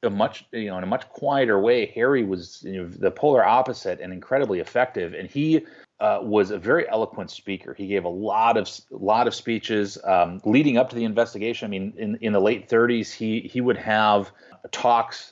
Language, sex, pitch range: English, male, 95-120 Hz